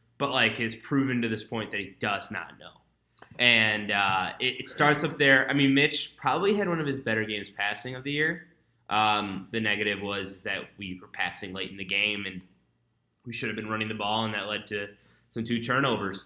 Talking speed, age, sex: 220 wpm, 20-39, male